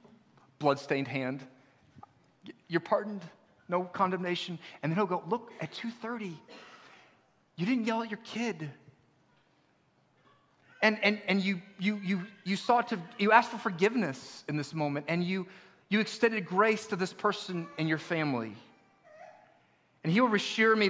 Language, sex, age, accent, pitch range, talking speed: English, male, 40-59, American, 130-190 Hz, 145 wpm